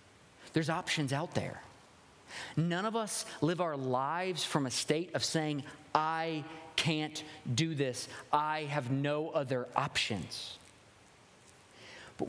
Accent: American